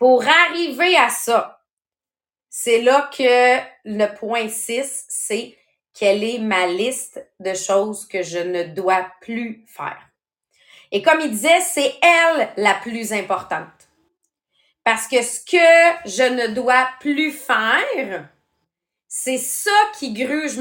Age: 30-49